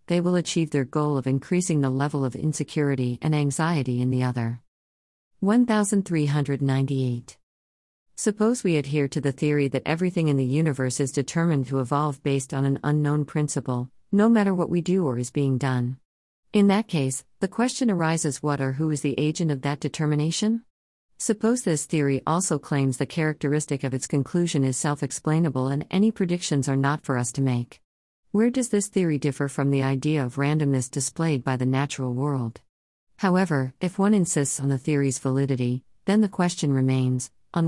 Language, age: English, 50-69